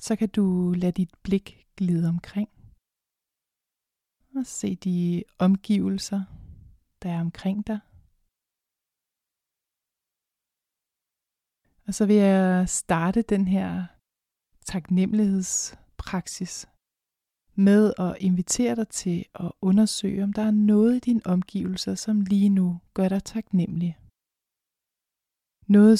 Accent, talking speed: native, 105 wpm